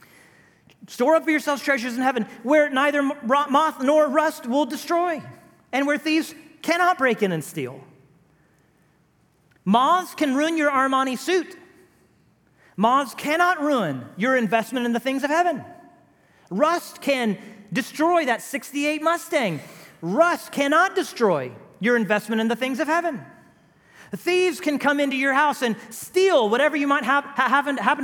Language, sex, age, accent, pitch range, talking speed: English, male, 40-59, American, 235-310 Hz, 140 wpm